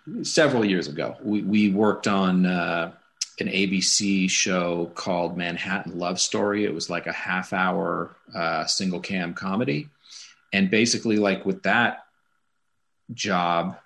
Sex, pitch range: male, 90-100 Hz